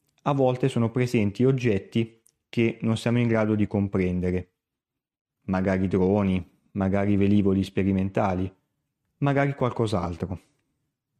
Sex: male